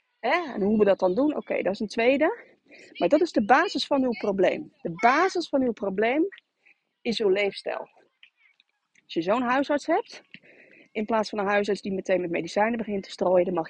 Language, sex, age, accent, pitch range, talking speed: Dutch, female, 30-49, Dutch, 220-330 Hz, 210 wpm